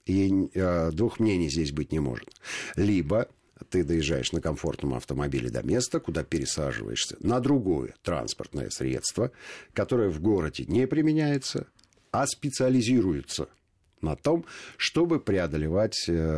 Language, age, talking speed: Russian, 50-69, 115 wpm